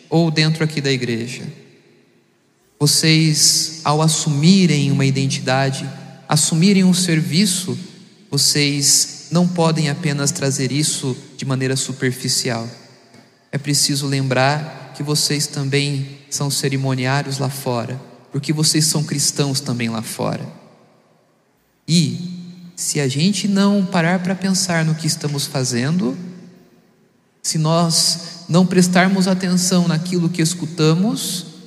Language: Portuguese